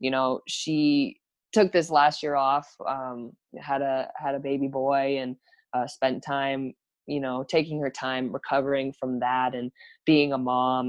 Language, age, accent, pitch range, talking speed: English, 20-39, American, 130-145 Hz, 170 wpm